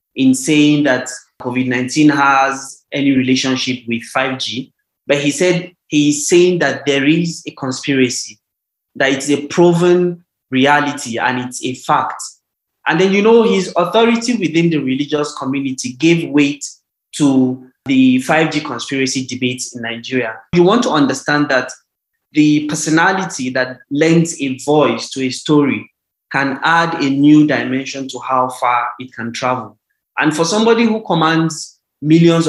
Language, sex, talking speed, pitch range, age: English, male, 145 wpm, 130-160 Hz, 20-39